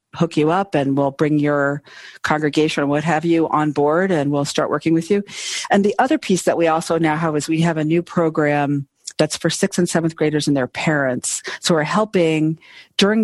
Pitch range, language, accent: 145-175 Hz, English, American